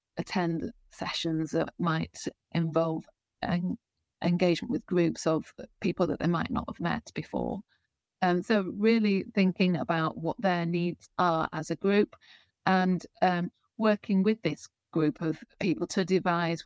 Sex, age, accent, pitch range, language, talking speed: female, 40-59, British, 165-190 Hz, English, 140 wpm